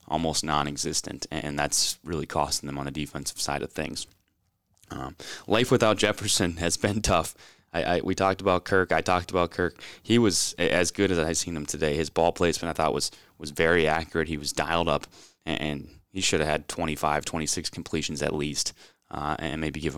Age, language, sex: 20-39, English, male